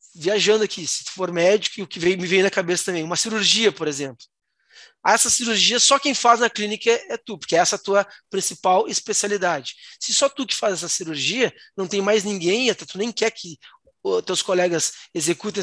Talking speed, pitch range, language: 215 wpm, 170-215 Hz, Portuguese